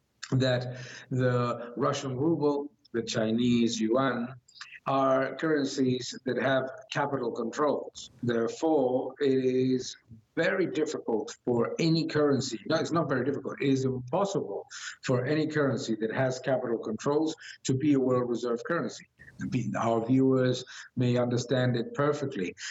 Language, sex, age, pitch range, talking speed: English, male, 50-69, 125-140 Hz, 125 wpm